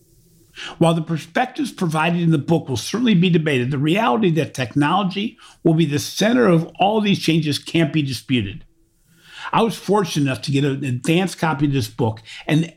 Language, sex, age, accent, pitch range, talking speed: English, male, 50-69, American, 135-175 Hz, 185 wpm